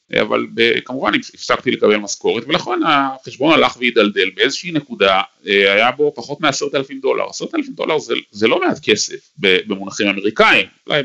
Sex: male